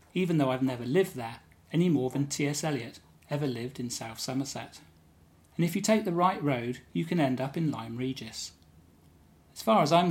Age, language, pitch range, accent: 40-59, English, 120-160 Hz, British